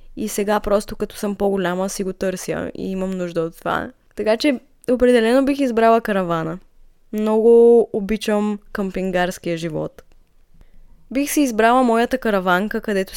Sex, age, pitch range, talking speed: female, 20-39, 185-235 Hz, 135 wpm